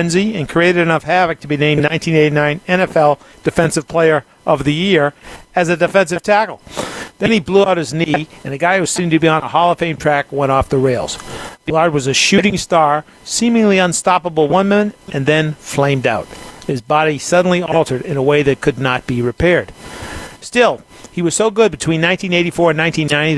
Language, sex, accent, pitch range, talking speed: English, male, American, 145-180 Hz, 195 wpm